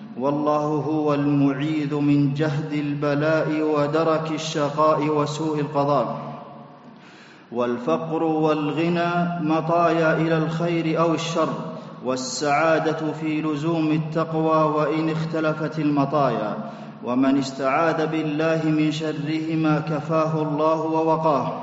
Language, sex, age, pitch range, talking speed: Arabic, male, 40-59, 145-160 Hz, 90 wpm